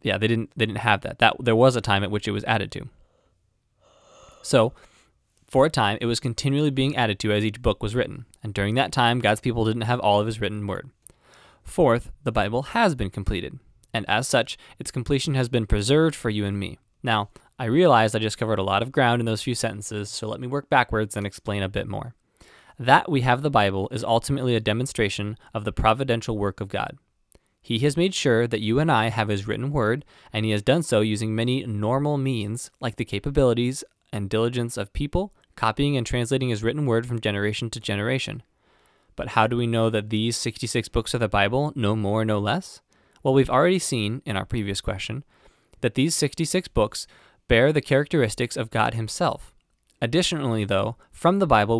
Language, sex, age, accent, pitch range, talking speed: English, male, 20-39, American, 105-130 Hz, 210 wpm